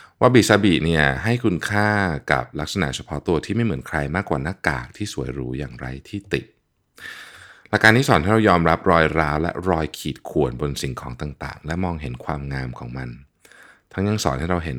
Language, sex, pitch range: Thai, male, 70-100 Hz